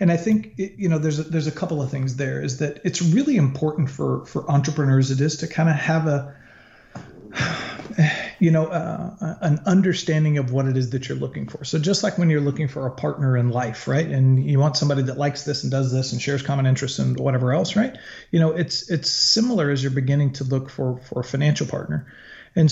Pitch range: 130-160 Hz